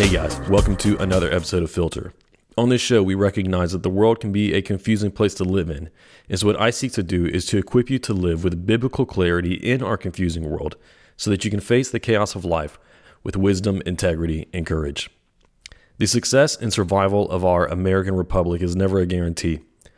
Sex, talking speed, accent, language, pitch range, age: male, 210 wpm, American, English, 90-110 Hz, 30-49